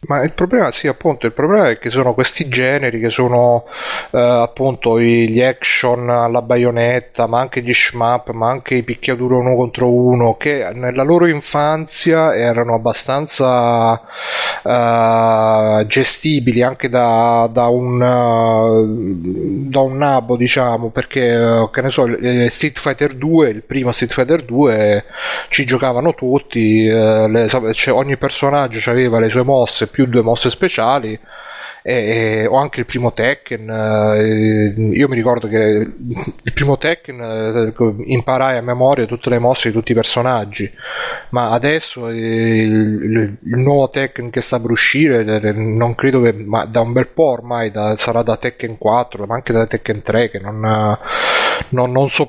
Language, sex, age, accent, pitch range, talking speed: Italian, male, 30-49, native, 115-130 Hz, 160 wpm